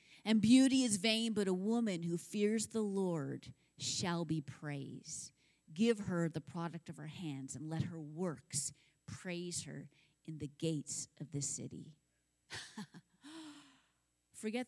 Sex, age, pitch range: female, 30-49, 140-210 Hz